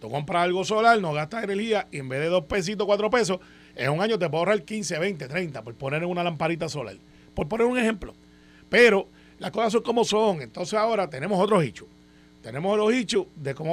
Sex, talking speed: male, 220 wpm